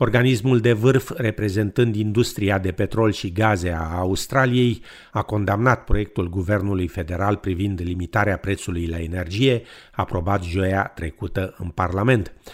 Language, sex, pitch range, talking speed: Romanian, male, 95-120 Hz, 125 wpm